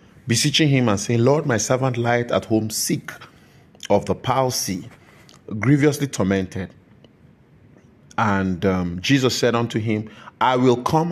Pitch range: 115-145 Hz